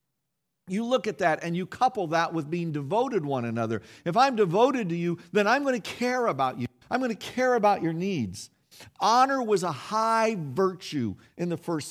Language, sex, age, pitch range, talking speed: English, male, 50-69, 165-225 Hz, 200 wpm